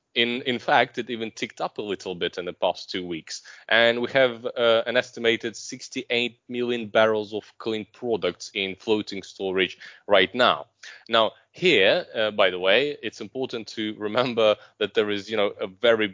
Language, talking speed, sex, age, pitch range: English, 180 wpm, male, 20-39, 105-130 Hz